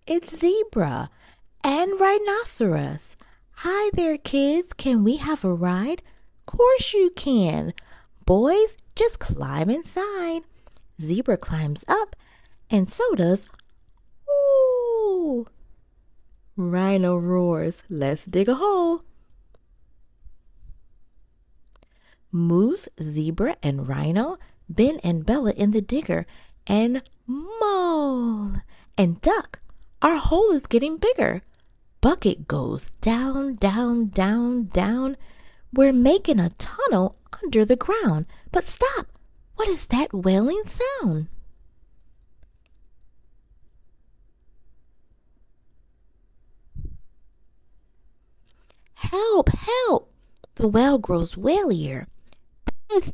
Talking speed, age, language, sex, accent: 90 wpm, 40-59, English, female, American